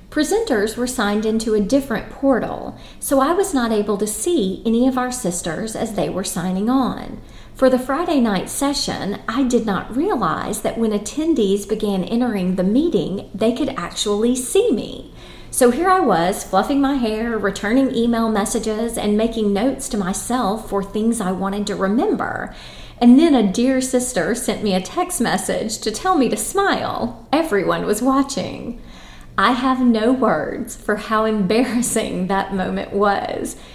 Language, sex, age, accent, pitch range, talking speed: English, female, 40-59, American, 200-255 Hz, 165 wpm